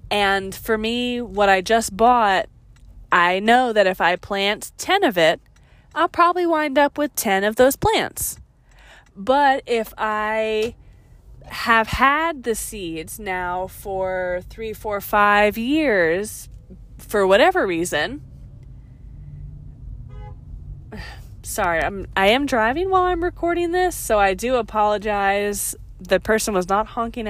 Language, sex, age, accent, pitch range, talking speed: English, female, 20-39, American, 195-265 Hz, 125 wpm